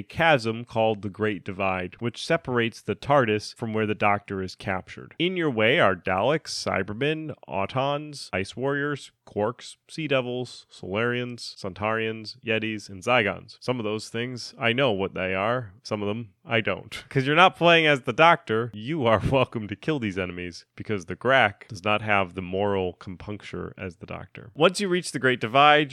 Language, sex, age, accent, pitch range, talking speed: English, male, 30-49, American, 105-140 Hz, 185 wpm